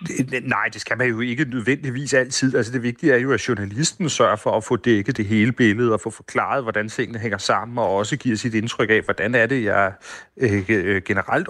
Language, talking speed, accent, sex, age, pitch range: Danish, 215 wpm, native, male, 30-49, 110-130 Hz